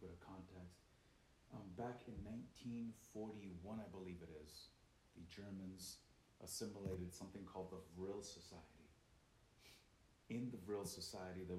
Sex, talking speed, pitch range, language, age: male, 115 wpm, 90-105 Hz, English, 30-49